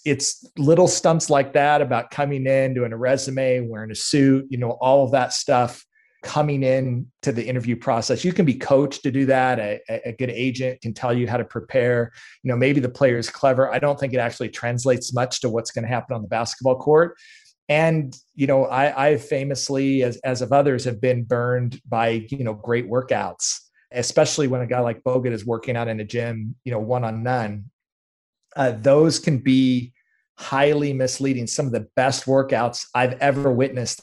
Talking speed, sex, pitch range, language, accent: 205 wpm, male, 120-140 Hz, English, American